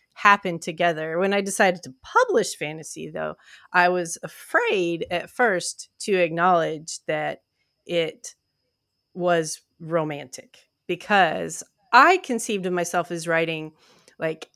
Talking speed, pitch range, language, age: 115 wpm, 165-200 Hz, English, 30-49